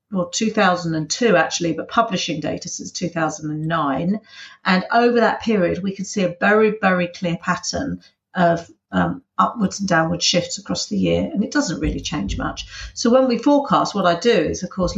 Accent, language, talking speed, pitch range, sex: British, English, 180 wpm, 175-205 Hz, female